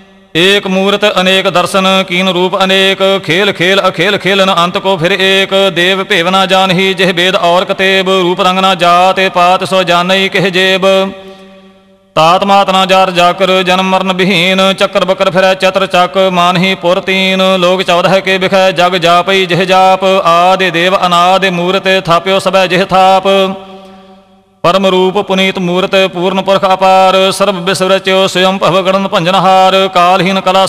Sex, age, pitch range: male, 40-59, 185-195 Hz